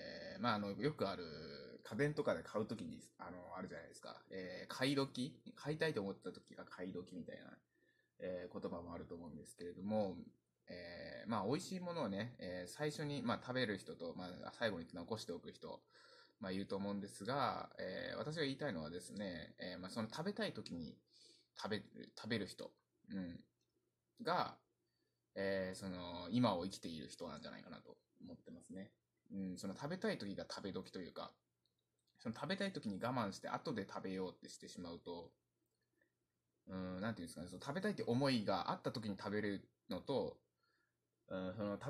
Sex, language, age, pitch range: male, Japanese, 20-39, 90-140 Hz